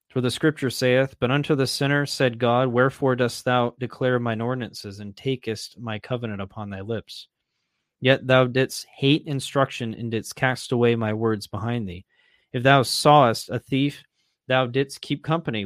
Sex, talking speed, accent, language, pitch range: male, 175 wpm, American, English, 110-135 Hz